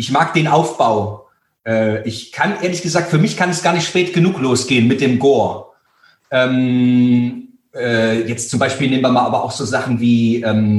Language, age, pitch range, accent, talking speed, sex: German, 30-49, 135-195 Hz, German, 190 wpm, male